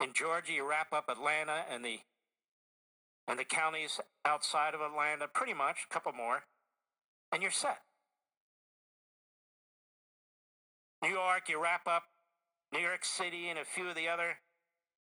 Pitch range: 150-190 Hz